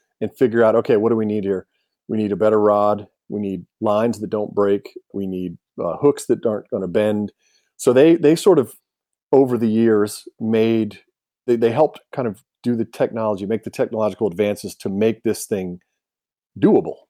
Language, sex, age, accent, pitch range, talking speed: English, male, 40-59, American, 100-115 Hz, 190 wpm